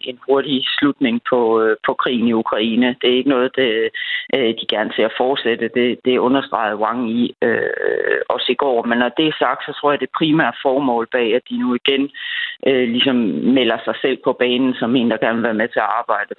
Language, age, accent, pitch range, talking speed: Danish, 30-49, native, 125-170 Hz, 215 wpm